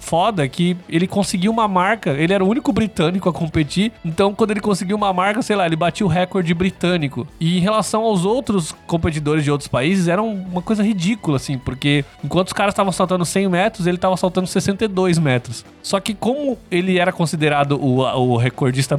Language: Portuguese